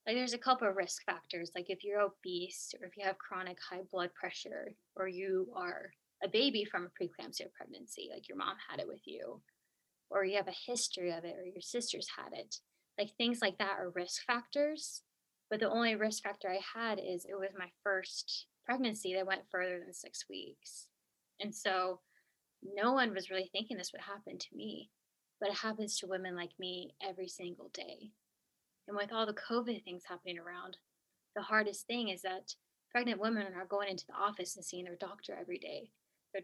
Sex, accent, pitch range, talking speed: female, American, 185-215 Hz, 200 wpm